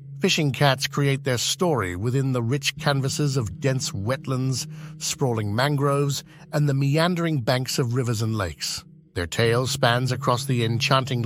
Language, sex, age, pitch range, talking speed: English, male, 50-69, 120-155 Hz, 150 wpm